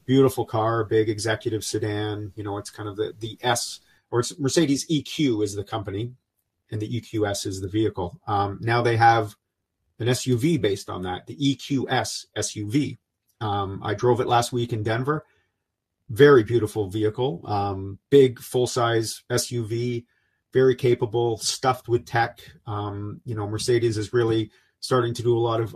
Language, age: English, 40-59